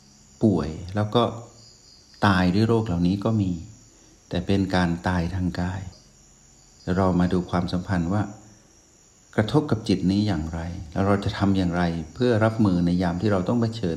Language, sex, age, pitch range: Thai, male, 60-79, 90-110 Hz